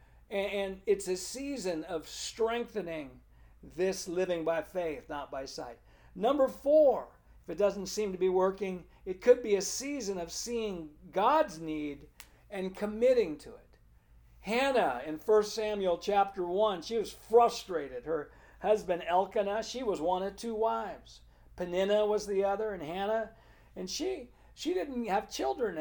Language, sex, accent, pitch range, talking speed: English, male, American, 180-235 Hz, 150 wpm